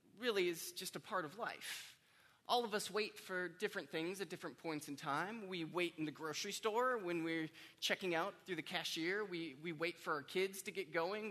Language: English